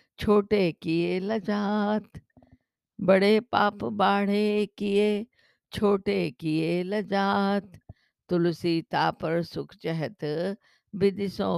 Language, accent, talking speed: Hindi, native, 75 wpm